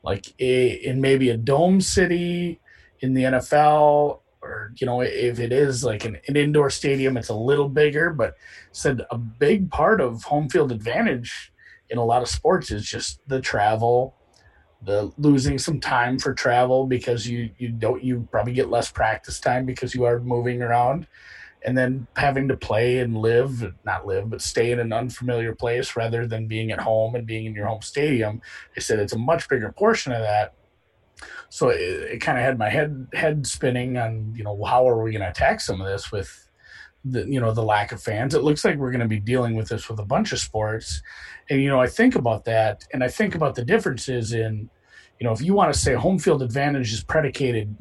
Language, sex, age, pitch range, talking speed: English, male, 30-49, 115-150 Hz, 215 wpm